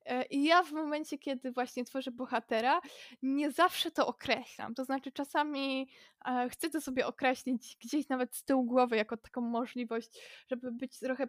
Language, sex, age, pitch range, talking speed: Polish, female, 20-39, 240-285 Hz, 160 wpm